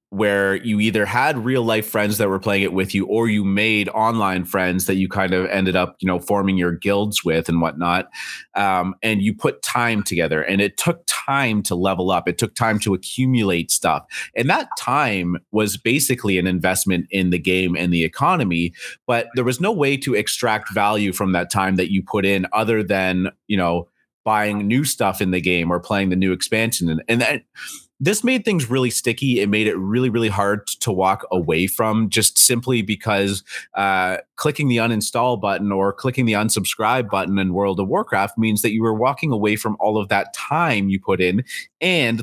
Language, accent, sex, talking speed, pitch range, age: English, American, male, 205 wpm, 95-115 Hz, 30-49